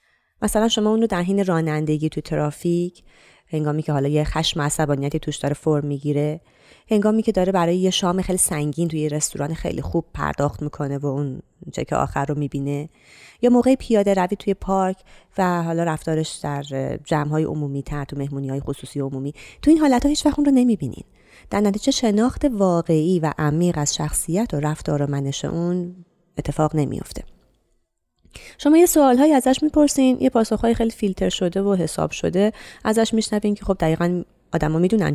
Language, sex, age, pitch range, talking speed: Persian, female, 30-49, 145-205 Hz, 170 wpm